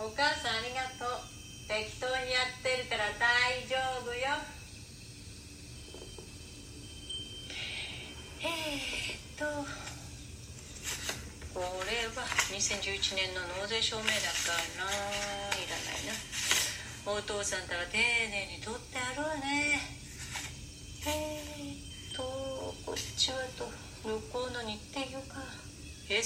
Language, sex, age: Japanese, female, 40-59